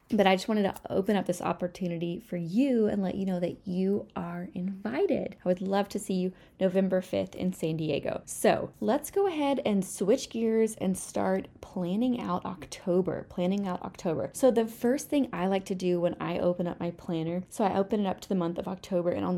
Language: English